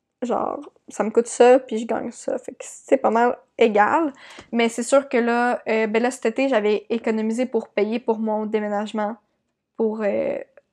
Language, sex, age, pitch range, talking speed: French, female, 20-39, 220-260 Hz, 190 wpm